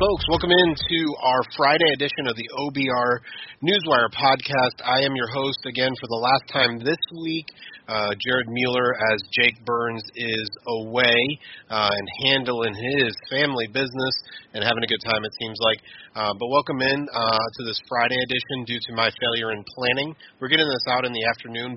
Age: 30-49